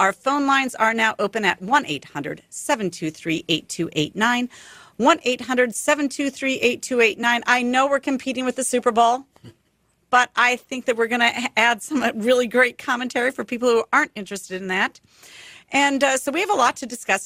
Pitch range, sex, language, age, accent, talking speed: 190-255 Hz, female, English, 50-69, American, 155 wpm